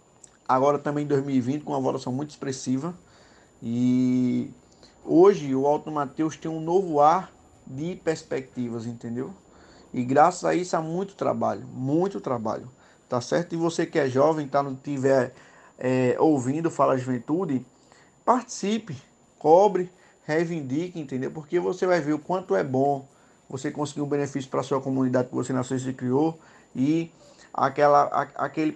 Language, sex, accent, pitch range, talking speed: Portuguese, male, Brazilian, 130-160 Hz, 160 wpm